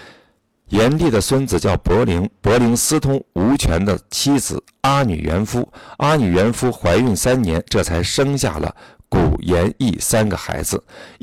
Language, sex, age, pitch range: Chinese, male, 50-69, 85-120 Hz